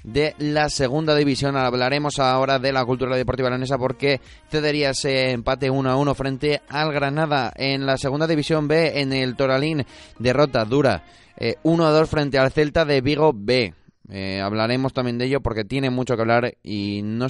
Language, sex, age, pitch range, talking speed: Spanish, male, 20-39, 110-145 Hz, 170 wpm